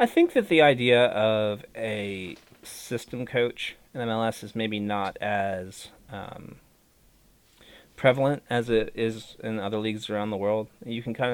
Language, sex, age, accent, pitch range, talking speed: English, male, 30-49, American, 105-135 Hz, 155 wpm